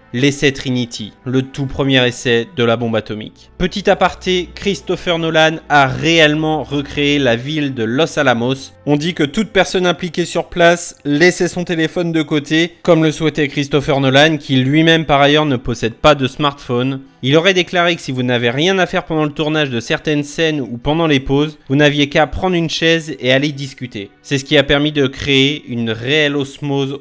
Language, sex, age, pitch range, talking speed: French, male, 20-39, 135-165 Hz, 195 wpm